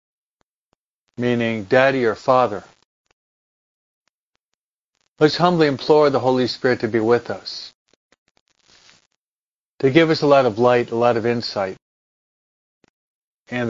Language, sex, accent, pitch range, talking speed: English, male, American, 110-130 Hz, 115 wpm